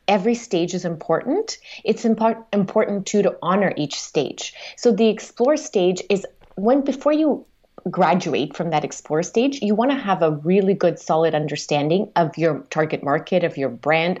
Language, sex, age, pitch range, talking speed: English, female, 30-49, 165-220 Hz, 170 wpm